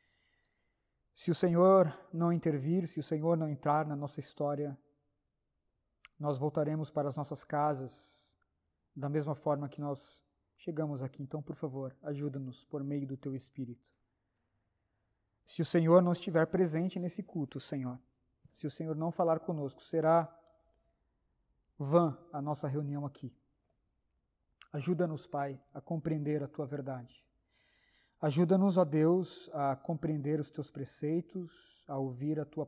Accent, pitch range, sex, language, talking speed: Brazilian, 135-160 Hz, male, Portuguese, 140 wpm